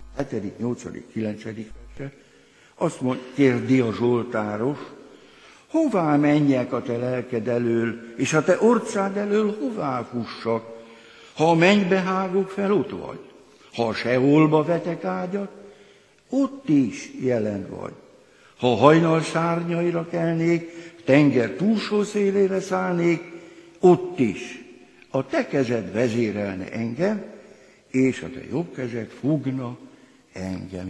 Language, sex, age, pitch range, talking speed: Hungarian, male, 60-79, 115-170 Hz, 110 wpm